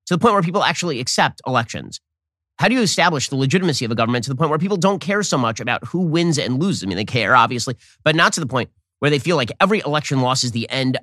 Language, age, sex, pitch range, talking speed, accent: English, 30-49, male, 105-160 Hz, 275 wpm, American